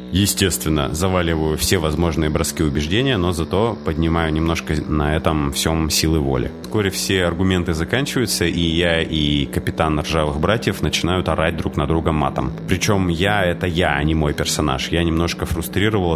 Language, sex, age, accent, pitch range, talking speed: Russian, male, 30-49, native, 80-90 Hz, 155 wpm